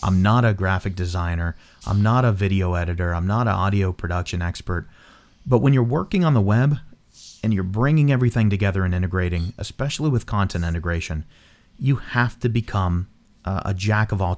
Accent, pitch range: American, 90-115 Hz